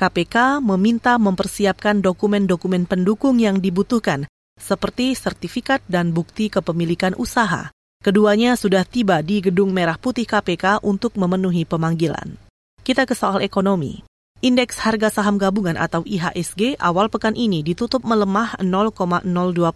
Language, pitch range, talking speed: Indonesian, 180-225 Hz, 120 wpm